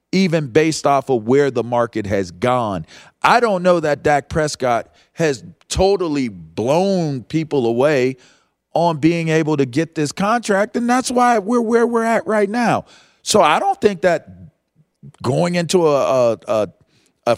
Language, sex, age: English, male, 40-59